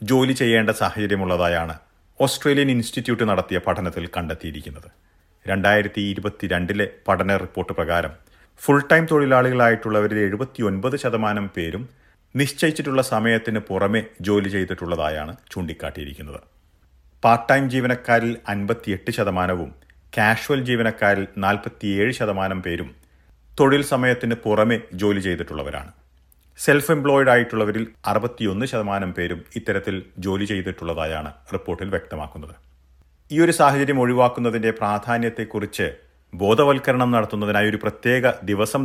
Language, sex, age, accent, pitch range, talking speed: Malayalam, male, 40-59, native, 90-120 Hz, 90 wpm